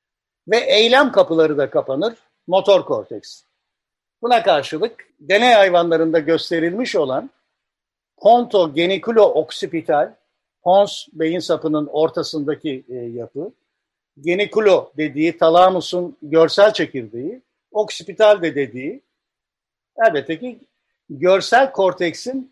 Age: 60-79